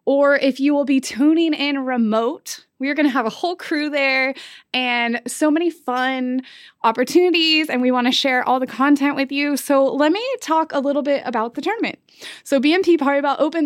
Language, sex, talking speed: English, female, 195 wpm